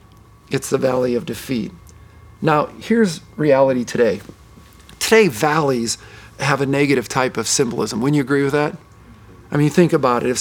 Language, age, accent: English, 40-59, American